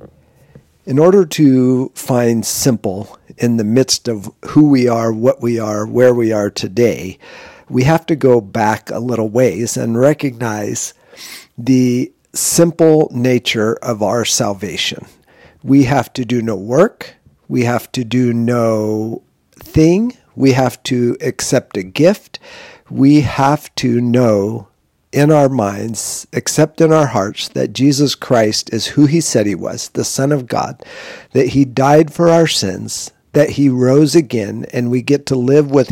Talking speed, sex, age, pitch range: 155 wpm, male, 50-69, 115-145 Hz